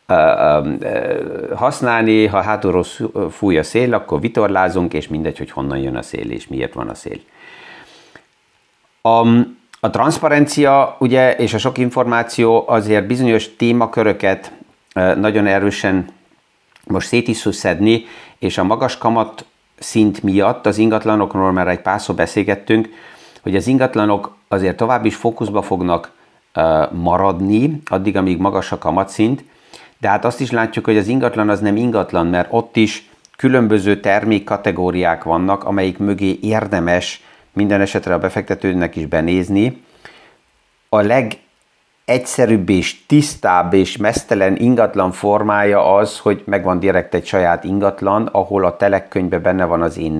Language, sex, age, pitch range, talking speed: Hungarian, male, 50-69, 95-115 Hz, 135 wpm